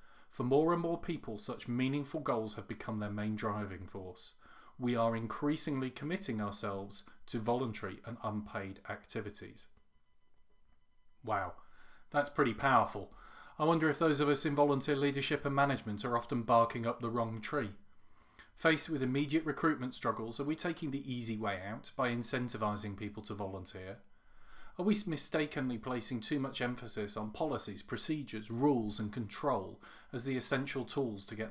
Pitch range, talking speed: 110-145 Hz, 155 wpm